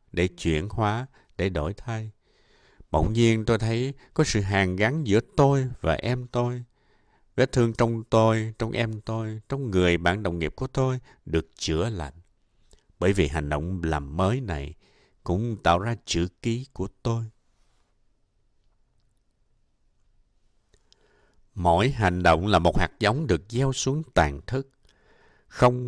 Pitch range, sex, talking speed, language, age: 85-120 Hz, male, 145 wpm, Vietnamese, 60-79